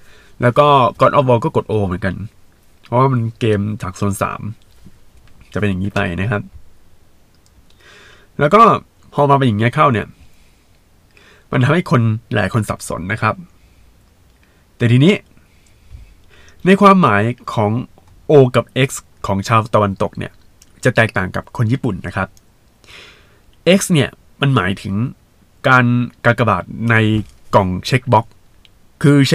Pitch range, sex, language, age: 100-125 Hz, male, Thai, 20-39